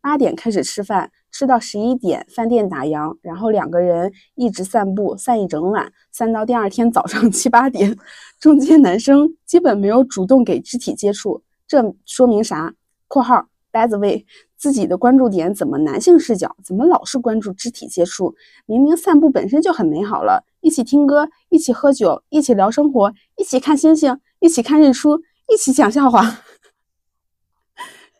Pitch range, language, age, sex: 230-315 Hz, Chinese, 20-39, female